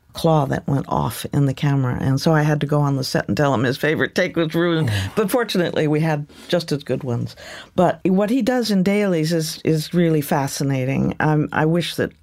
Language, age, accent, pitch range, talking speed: English, 50-69, American, 145-170 Hz, 225 wpm